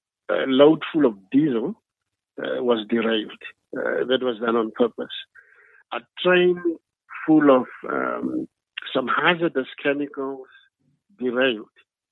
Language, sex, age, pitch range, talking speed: English, male, 50-69, 115-145 Hz, 115 wpm